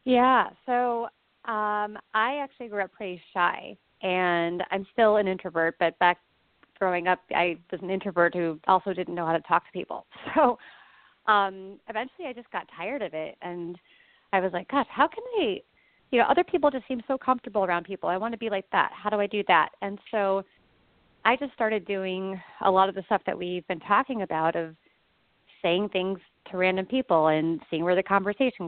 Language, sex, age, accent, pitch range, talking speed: English, female, 30-49, American, 175-220 Hz, 200 wpm